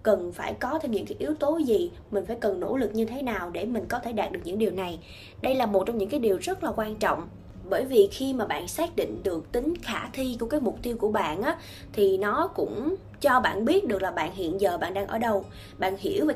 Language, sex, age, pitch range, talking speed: Vietnamese, female, 20-39, 220-325 Hz, 270 wpm